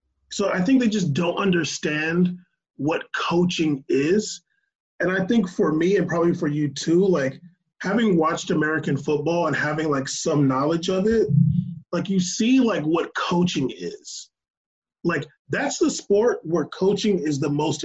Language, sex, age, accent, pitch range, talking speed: English, male, 30-49, American, 165-210 Hz, 160 wpm